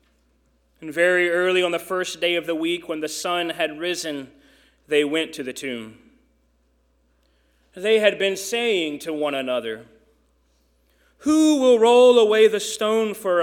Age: 30-49